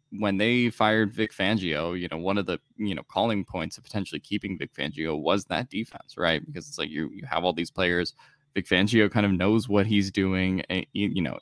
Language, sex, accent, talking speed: English, male, American, 225 wpm